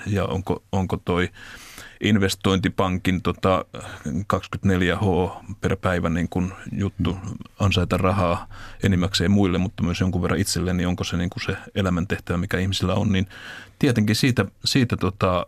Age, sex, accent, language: 30-49, male, native, Finnish